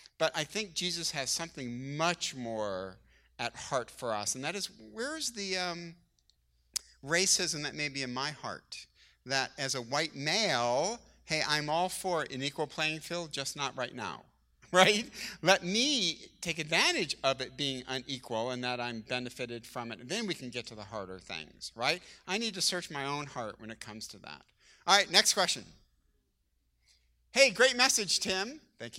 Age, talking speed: 50-69, 180 wpm